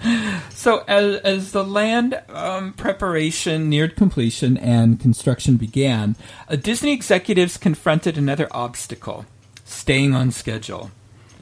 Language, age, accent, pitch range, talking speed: English, 50-69, American, 115-165 Hz, 110 wpm